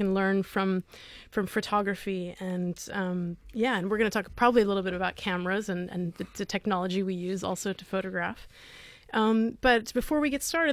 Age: 30-49